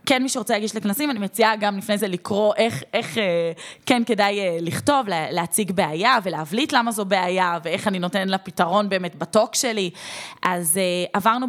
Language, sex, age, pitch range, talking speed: Hebrew, female, 20-39, 180-230 Hz, 165 wpm